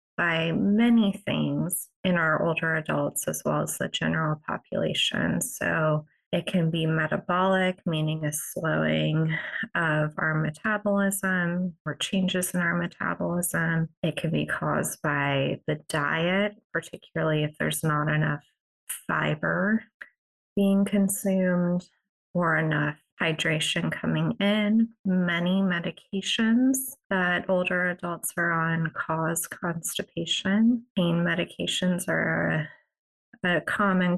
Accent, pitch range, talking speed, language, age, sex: American, 155-190 Hz, 110 wpm, English, 20-39, female